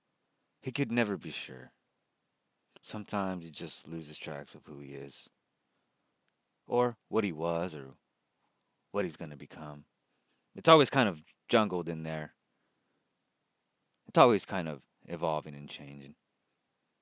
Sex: male